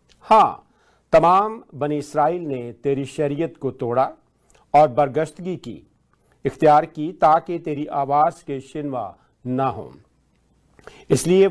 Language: Hindi